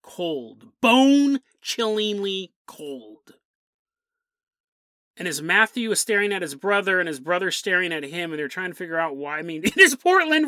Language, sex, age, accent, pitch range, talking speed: English, male, 30-49, American, 185-275 Hz, 170 wpm